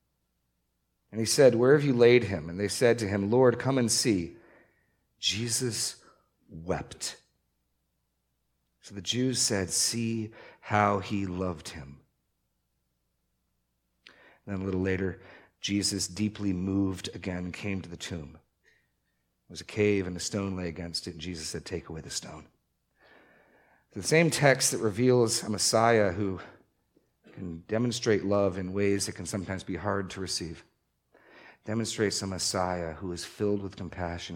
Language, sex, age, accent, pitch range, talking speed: English, male, 40-59, American, 85-115 Hz, 150 wpm